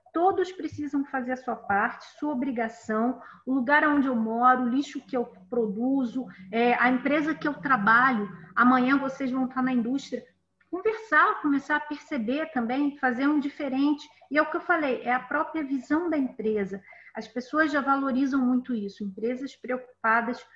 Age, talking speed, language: 40-59, 165 wpm, Portuguese